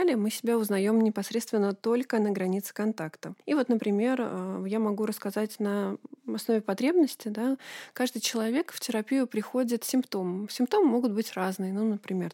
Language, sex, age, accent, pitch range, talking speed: Russian, female, 20-39, native, 205-250 Hz, 145 wpm